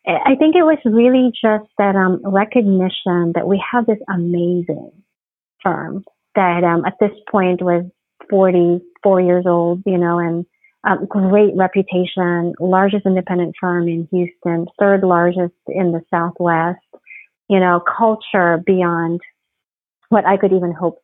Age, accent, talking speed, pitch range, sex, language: 40-59, American, 140 wpm, 170-200 Hz, female, English